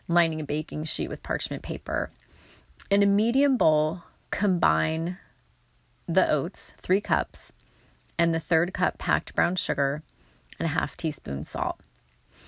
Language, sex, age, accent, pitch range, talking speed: English, female, 30-49, American, 150-185 Hz, 135 wpm